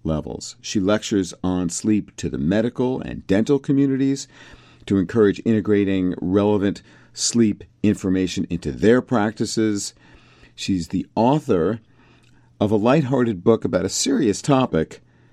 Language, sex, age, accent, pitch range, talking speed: English, male, 50-69, American, 80-120 Hz, 120 wpm